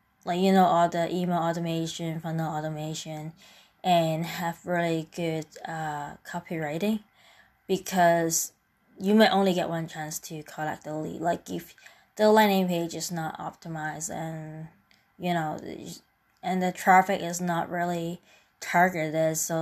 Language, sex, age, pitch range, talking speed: English, female, 20-39, 160-180 Hz, 140 wpm